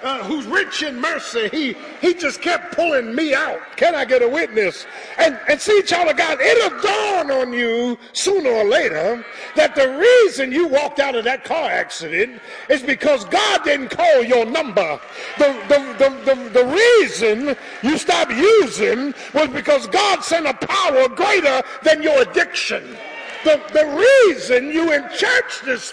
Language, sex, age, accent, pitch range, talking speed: English, male, 50-69, American, 275-385 Hz, 170 wpm